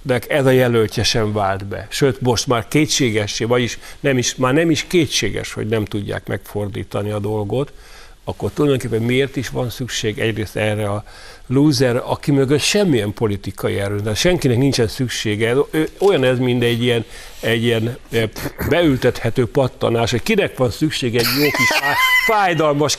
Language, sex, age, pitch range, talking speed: Hungarian, male, 60-79, 110-145 Hz, 150 wpm